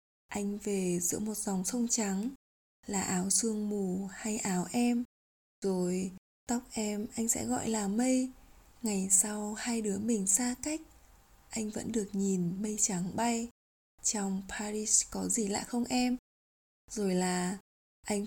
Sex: female